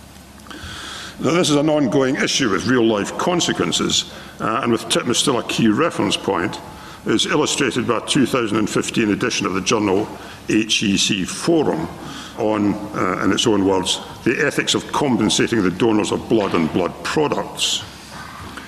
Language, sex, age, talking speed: English, male, 60-79, 150 wpm